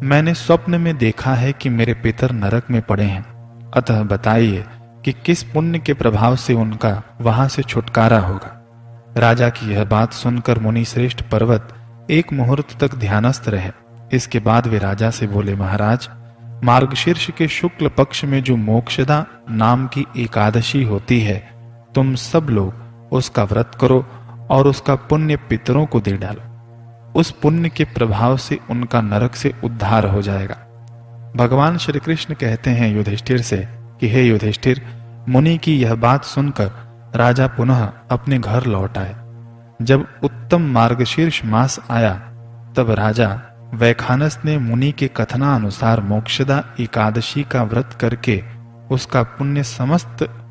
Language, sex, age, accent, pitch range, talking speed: Hindi, male, 30-49, native, 115-130 Hz, 145 wpm